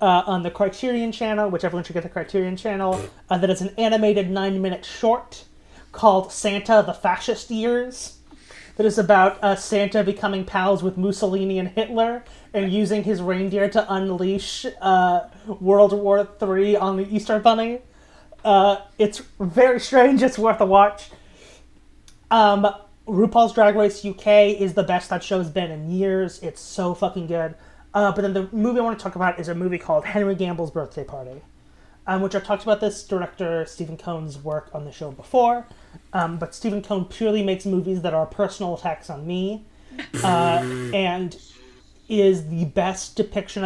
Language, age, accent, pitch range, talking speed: English, 30-49, American, 175-210 Hz, 175 wpm